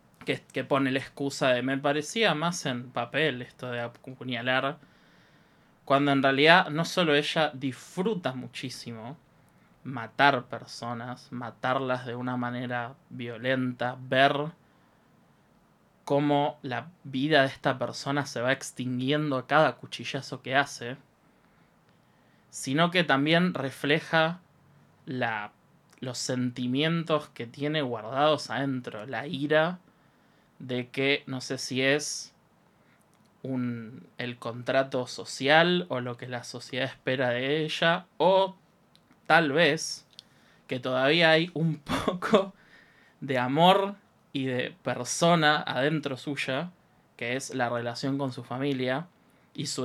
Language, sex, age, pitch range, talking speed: Spanish, male, 20-39, 125-150 Hz, 115 wpm